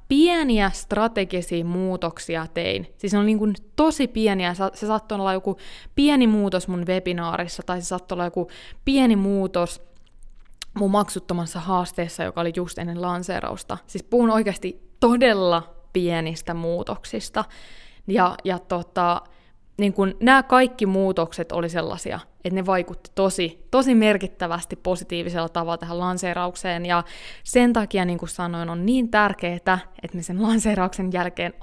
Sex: female